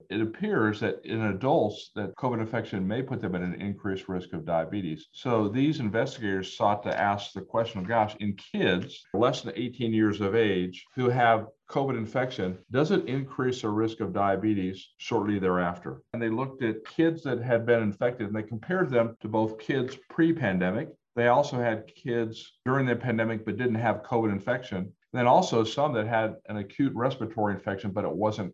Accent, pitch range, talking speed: American, 105-125 Hz, 190 wpm